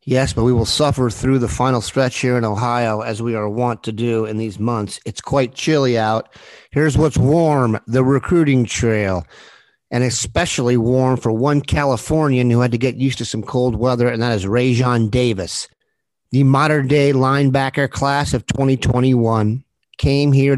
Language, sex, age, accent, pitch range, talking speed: English, male, 50-69, American, 115-135 Hz, 170 wpm